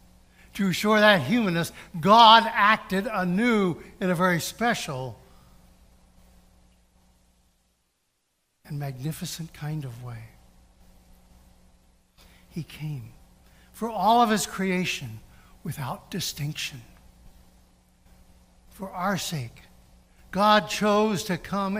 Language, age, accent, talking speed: English, 60-79, American, 90 wpm